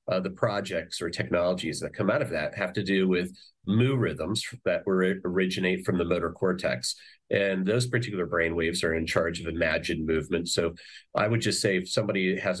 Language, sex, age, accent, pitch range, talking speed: English, male, 40-59, American, 90-110 Hz, 200 wpm